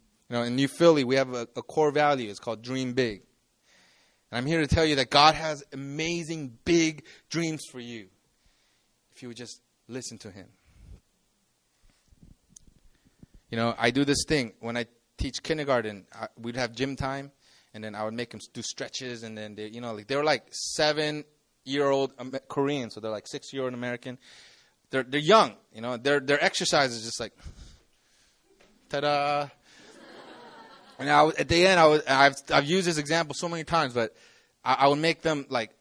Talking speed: 180 wpm